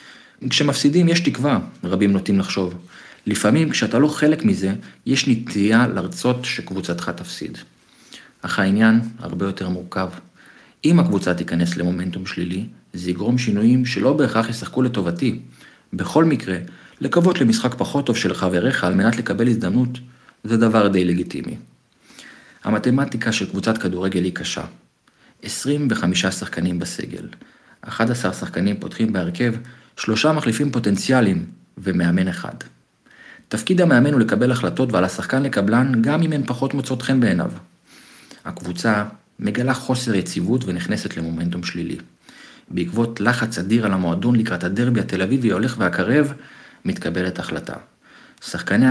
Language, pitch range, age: Hebrew, 90-130 Hz, 50-69